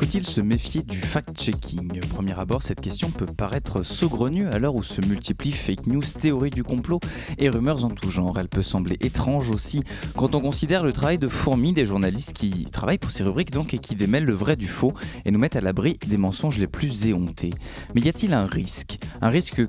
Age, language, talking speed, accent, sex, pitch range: 20-39, French, 215 wpm, French, male, 100-145 Hz